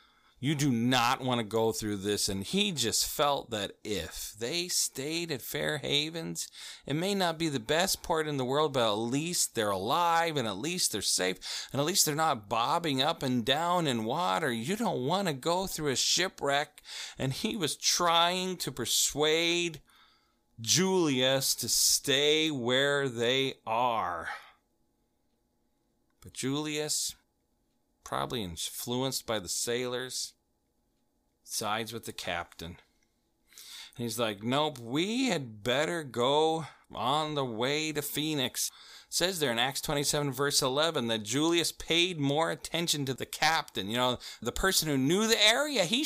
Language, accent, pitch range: English, American, 125-175 Hz